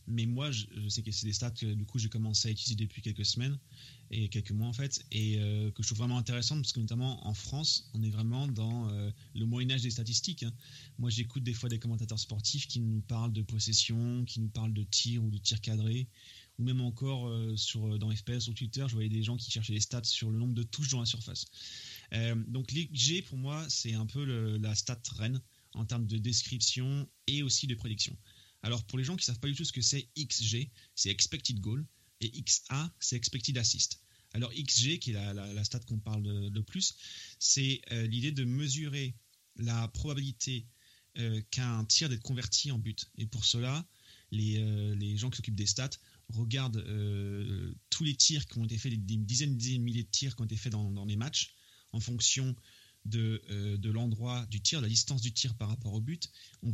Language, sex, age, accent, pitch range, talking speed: French, male, 20-39, French, 110-125 Hz, 220 wpm